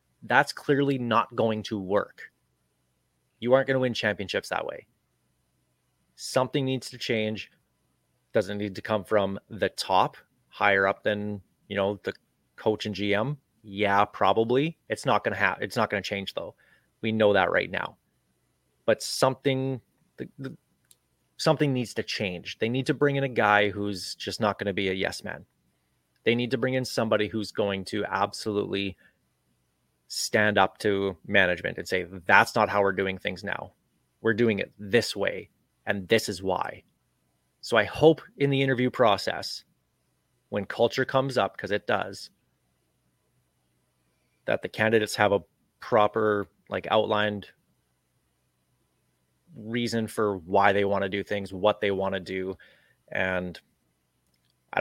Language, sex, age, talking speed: English, male, 30-49, 160 wpm